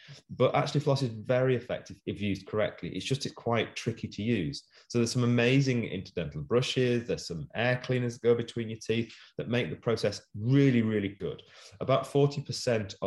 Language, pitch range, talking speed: English, 95-120 Hz, 185 wpm